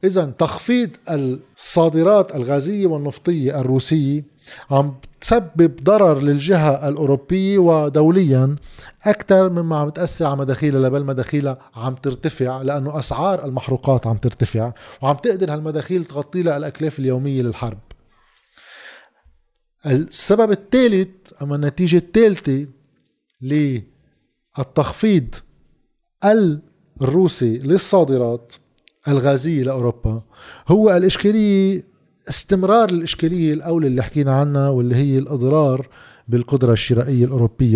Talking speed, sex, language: 90 wpm, male, Arabic